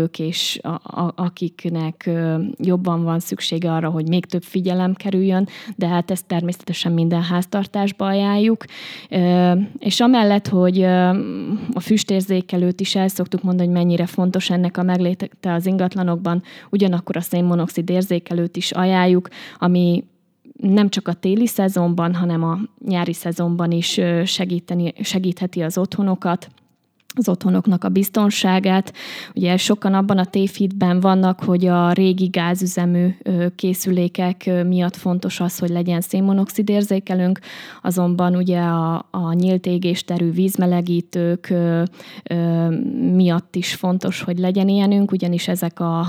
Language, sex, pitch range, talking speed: Hungarian, female, 175-190 Hz, 120 wpm